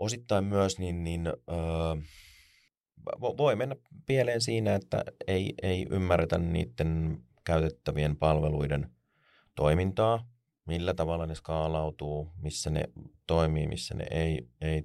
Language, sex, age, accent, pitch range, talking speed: Finnish, male, 30-49, native, 75-85 Hz, 100 wpm